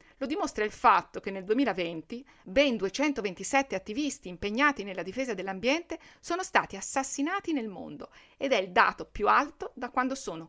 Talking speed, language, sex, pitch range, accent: 160 wpm, Italian, female, 205-290 Hz, native